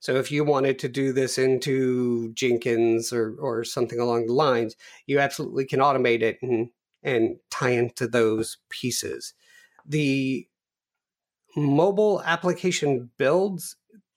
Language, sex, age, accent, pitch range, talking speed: English, male, 40-59, American, 125-160 Hz, 125 wpm